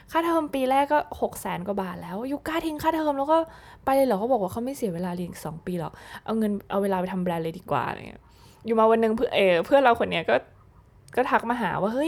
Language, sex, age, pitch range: Thai, female, 20-39, 180-250 Hz